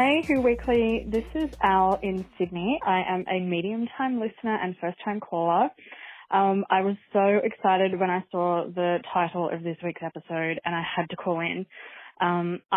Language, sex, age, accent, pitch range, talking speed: English, female, 20-39, Australian, 175-210 Hz, 175 wpm